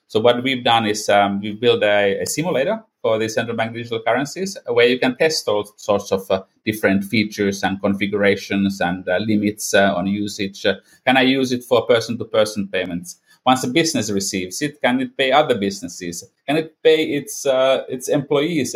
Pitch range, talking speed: 100-125 Hz, 195 wpm